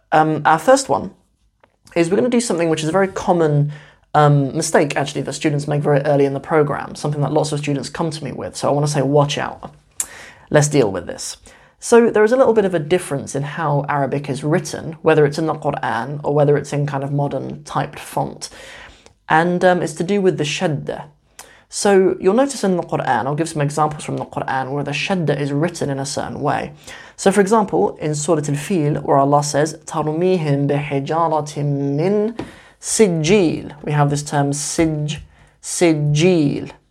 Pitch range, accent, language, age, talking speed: 145-170 Hz, British, English, 20-39, 200 wpm